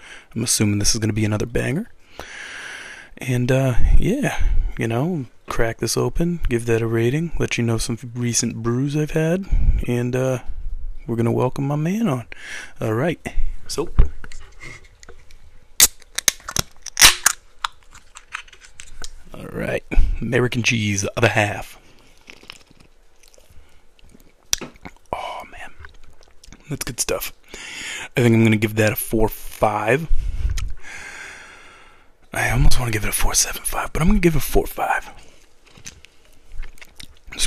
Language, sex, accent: English, male, American